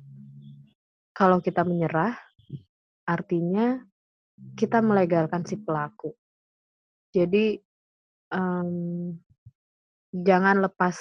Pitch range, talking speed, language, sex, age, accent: 165-195 Hz, 65 wpm, Indonesian, female, 20-39, native